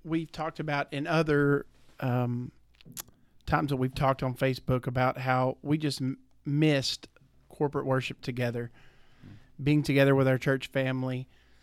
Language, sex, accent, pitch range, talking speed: English, male, American, 130-145 Hz, 140 wpm